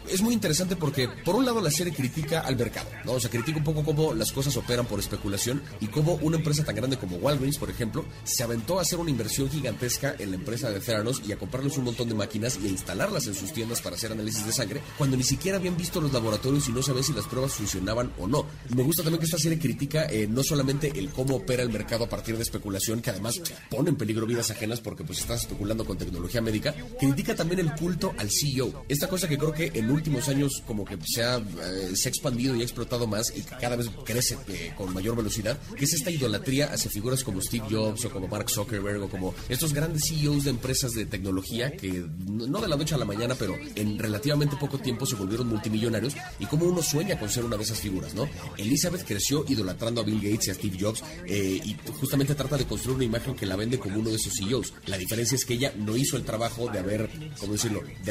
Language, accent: Spanish, Mexican